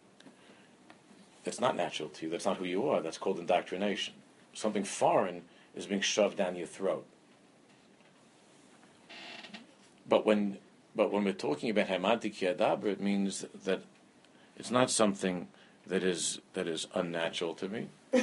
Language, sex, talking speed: English, male, 135 wpm